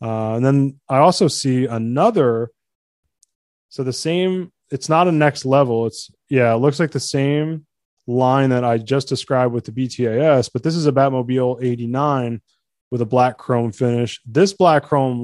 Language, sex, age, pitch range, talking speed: English, male, 20-39, 120-150 Hz, 175 wpm